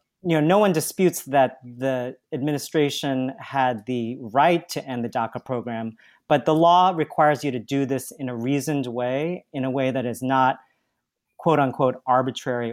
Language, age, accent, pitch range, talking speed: English, 40-59, American, 130-165 Hz, 170 wpm